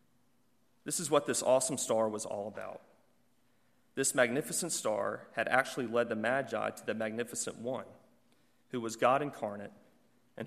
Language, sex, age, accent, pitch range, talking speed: English, male, 30-49, American, 110-135 Hz, 150 wpm